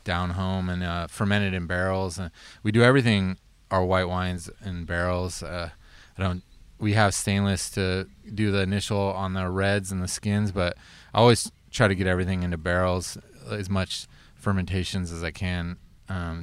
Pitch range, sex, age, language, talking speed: 90-100 Hz, male, 20-39, English, 175 wpm